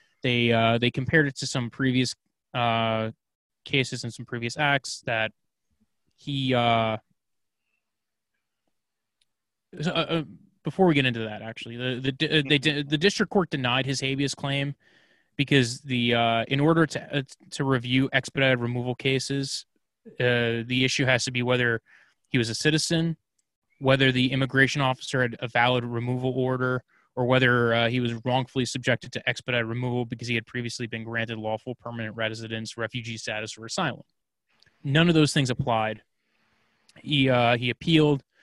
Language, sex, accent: English, male, American